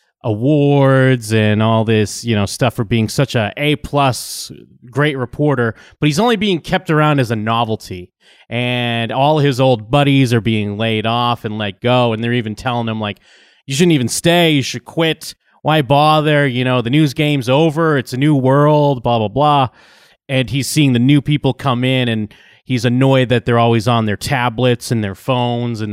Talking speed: 195 wpm